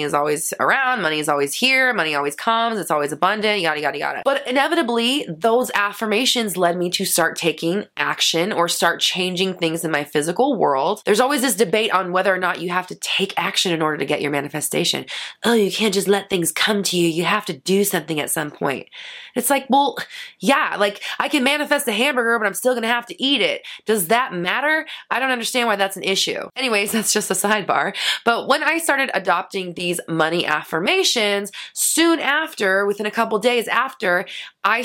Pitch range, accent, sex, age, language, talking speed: 185-255 Hz, American, female, 20-39, English, 205 wpm